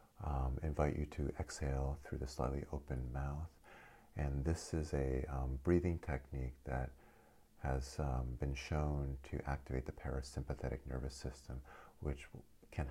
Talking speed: 140 wpm